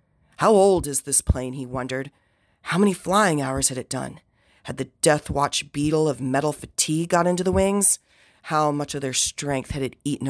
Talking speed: 190 wpm